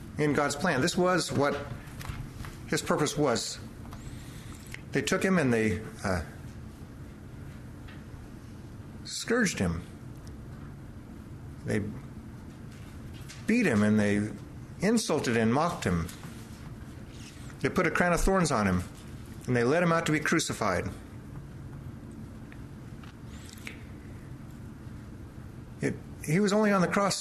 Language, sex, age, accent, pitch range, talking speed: English, male, 50-69, American, 115-155 Hz, 110 wpm